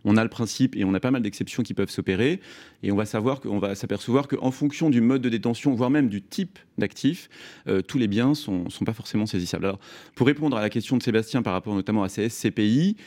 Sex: male